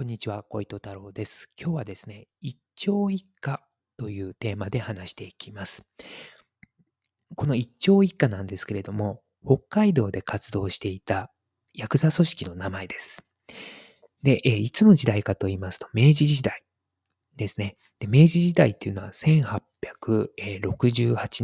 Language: Japanese